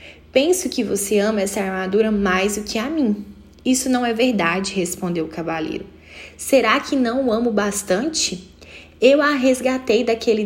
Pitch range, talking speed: 185-245 Hz, 160 wpm